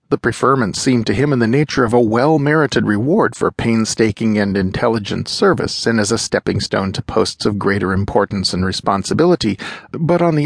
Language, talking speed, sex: English, 190 wpm, male